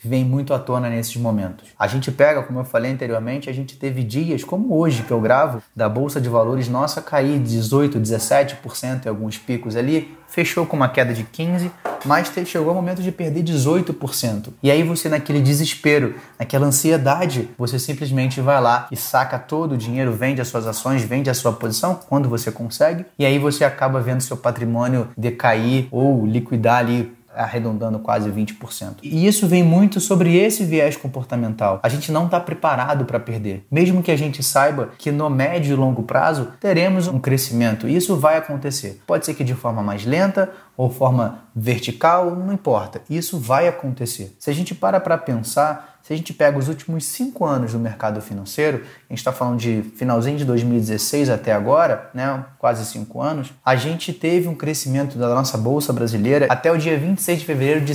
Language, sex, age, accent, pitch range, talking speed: Portuguese, male, 20-39, Brazilian, 120-155 Hz, 190 wpm